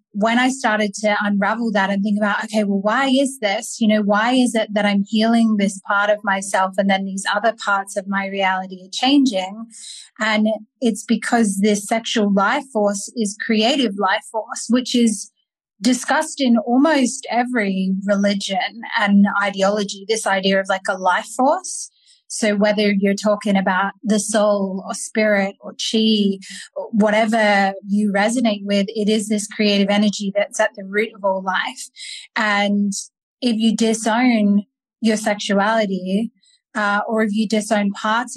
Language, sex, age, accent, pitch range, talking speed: English, female, 20-39, Australian, 200-230 Hz, 160 wpm